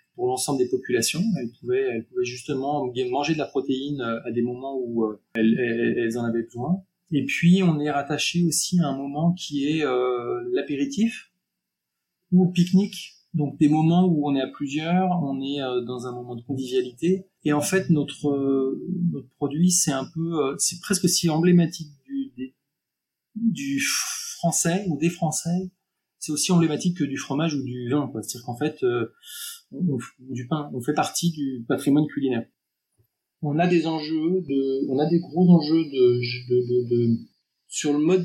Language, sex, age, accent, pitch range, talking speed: French, male, 30-49, French, 125-175 Hz, 175 wpm